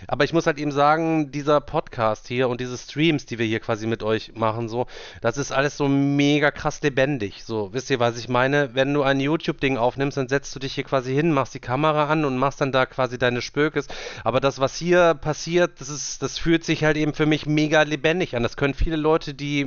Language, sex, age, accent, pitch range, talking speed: German, male, 30-49, German, 135-165 Hz, 240 wpm